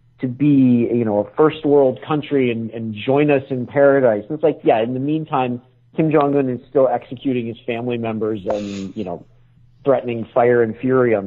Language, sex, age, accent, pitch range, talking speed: English, male, 40-59, American, 120-145 Hz, 195 wpm